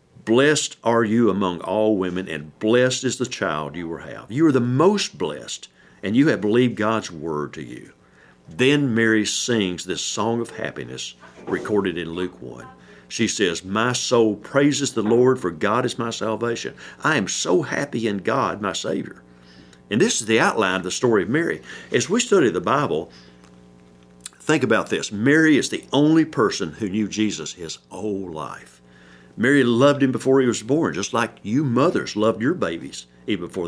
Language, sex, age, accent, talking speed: English, male, 50-69, American, 185 wpm